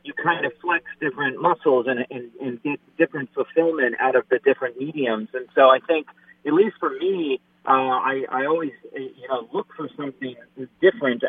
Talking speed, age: 185 wpm, 30-49